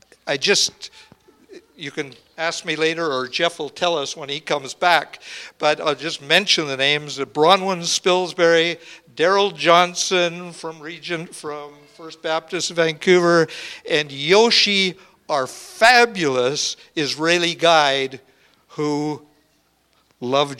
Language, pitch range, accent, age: English, 140-180 Hz, American, 60-79